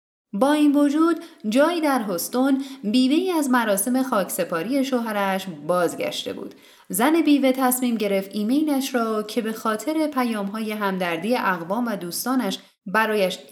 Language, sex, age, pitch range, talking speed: Persian, female, 10-29, 195-290 Hz, 140 wpm